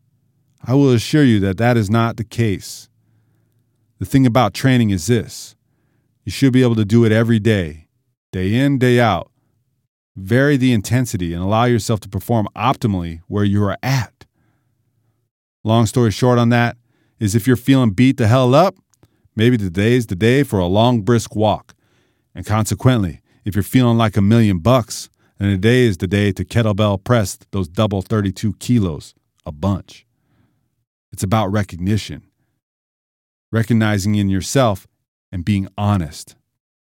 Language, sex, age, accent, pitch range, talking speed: English, male, 40-59, American, 100-120 Hz, 160 wpm